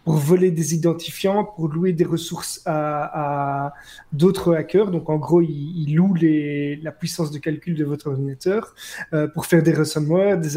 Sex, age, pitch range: male, 30-49, 155-180 Hz